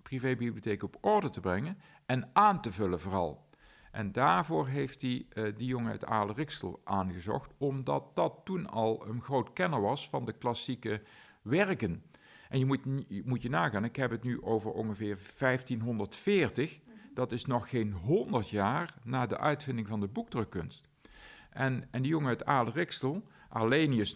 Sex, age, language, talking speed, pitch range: male, 50-69, Dutch, 160 wpm, 105-140 Hz